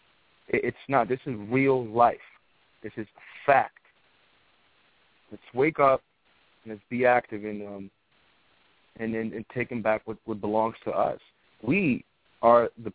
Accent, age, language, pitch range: American, 30-49, English, 110-130 Hz